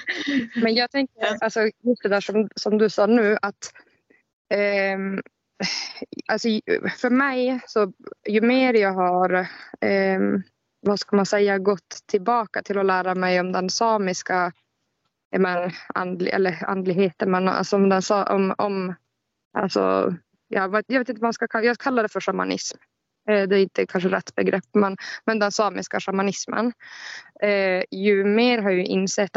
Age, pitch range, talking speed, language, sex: 20-39, 185-215 Hz, 150 wpm, Swedish, female